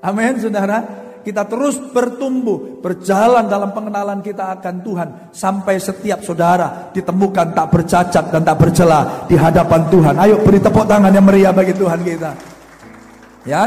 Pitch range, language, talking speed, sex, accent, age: 175-210 Hz, Indonesian, 145 wpm, male, native, 50-69